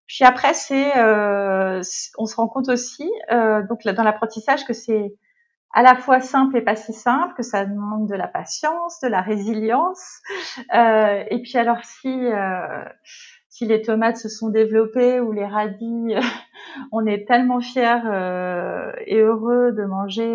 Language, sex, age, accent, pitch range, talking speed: French, female, 30-49, French, 210-245 Hz, 170 wpm